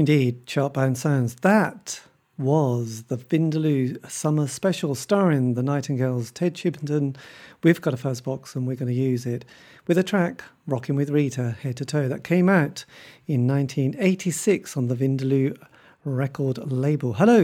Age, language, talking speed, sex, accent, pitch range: 40-59, English, 155 wpm, male, British, 140-175 Hz